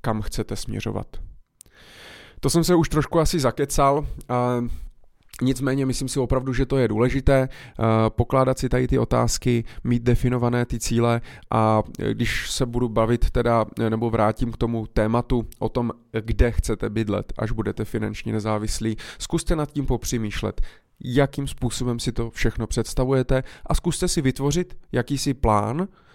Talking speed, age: 145 wpm, 20-39